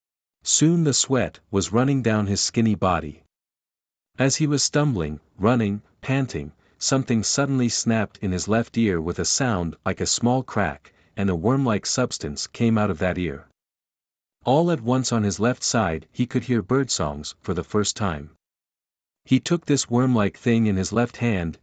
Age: 50-69